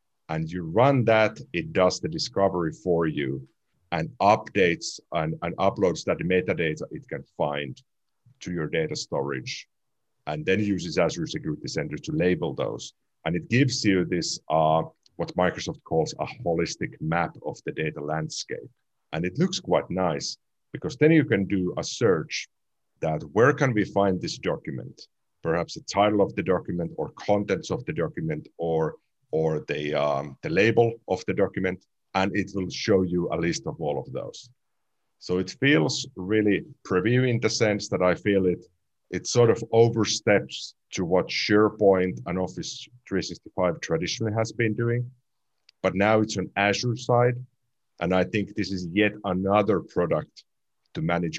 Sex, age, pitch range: male, 50-69, 90-115 Hz